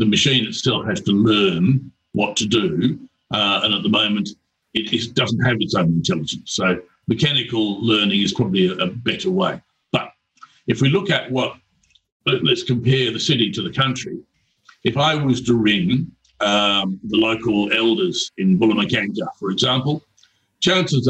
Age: 60-79